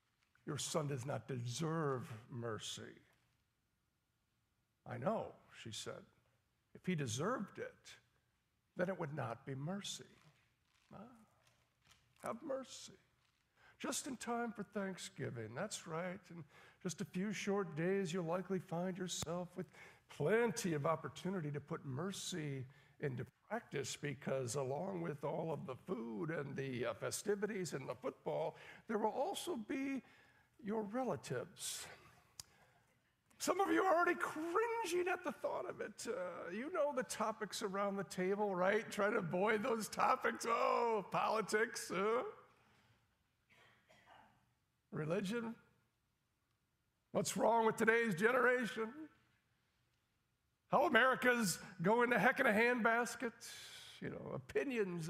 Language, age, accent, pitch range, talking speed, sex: English, 60-79, American, 160-230 Hz, 125 wpm, male